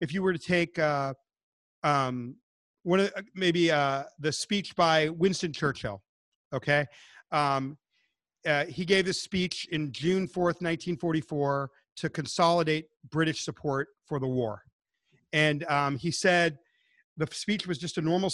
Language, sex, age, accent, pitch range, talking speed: English, male, 40-59, American, 145-180 Hz, 145 wpm